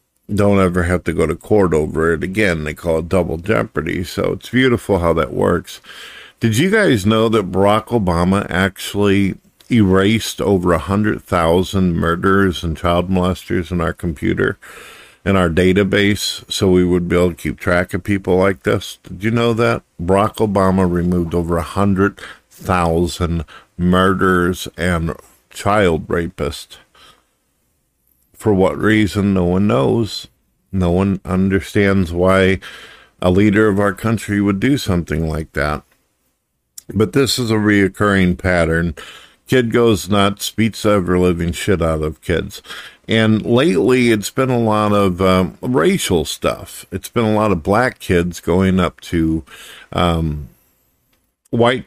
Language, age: English, 50-69